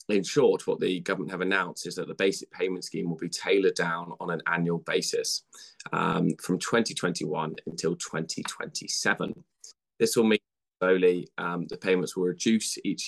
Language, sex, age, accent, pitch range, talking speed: English, male, 20-39, British, 90-110 Hz, 165 wpm